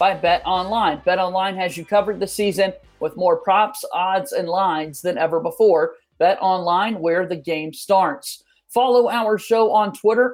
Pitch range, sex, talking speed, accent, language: 185-220 Hz, male, 175 wpm, American, English